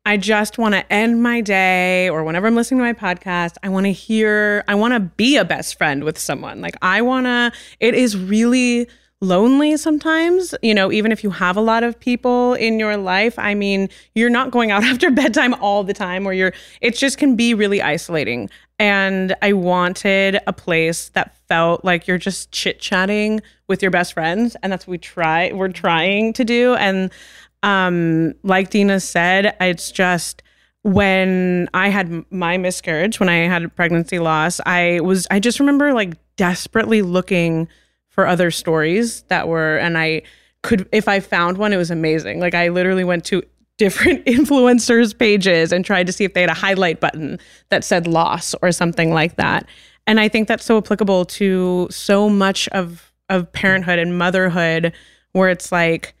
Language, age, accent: English, 20-39, American